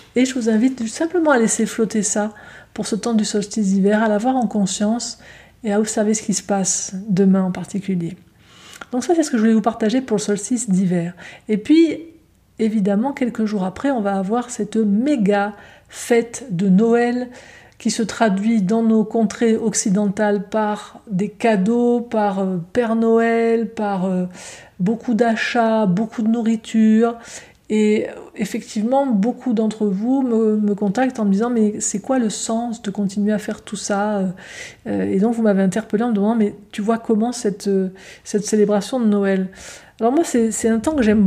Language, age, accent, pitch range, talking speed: French, 50-69, French, 205-235 Hz, 185 wpm